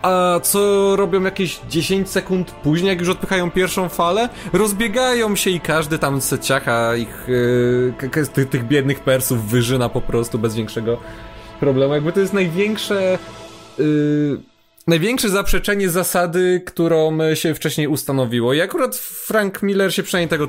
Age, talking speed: 20-39, 145 wpm